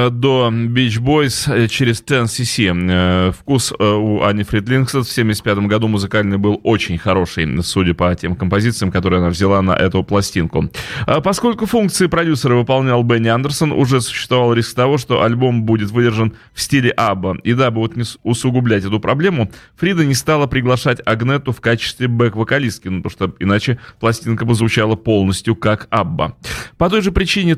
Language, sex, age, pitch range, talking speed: Russian, male, 30-49, 100-125 Hz, 165 wpm